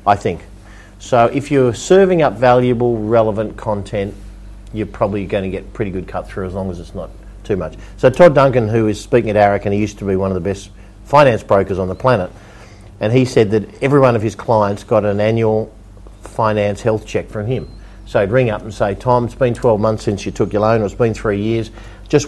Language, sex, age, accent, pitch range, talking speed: English, male, 50-69, Australian, 105-125 Hz, 235 wpm